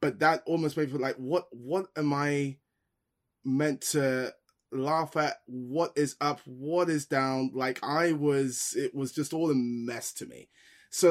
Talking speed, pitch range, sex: 180 wpm, 130-165 Hz, male